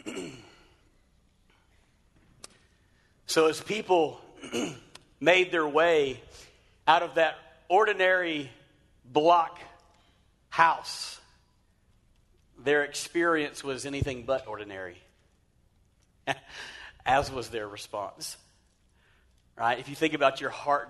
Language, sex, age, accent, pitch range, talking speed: English, male, 40-59, American, 145-205 Hz, 85 wpm